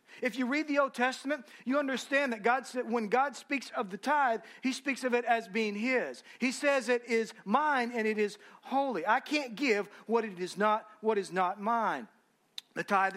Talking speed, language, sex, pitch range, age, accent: 210 wpm, English, male, 195-255 Hz, 40-59, American